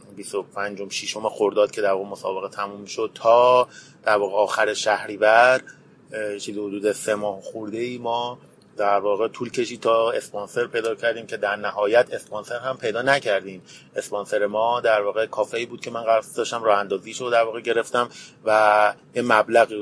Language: Persian